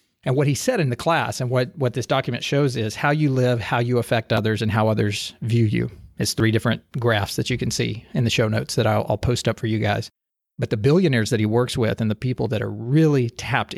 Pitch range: 110-135 Hz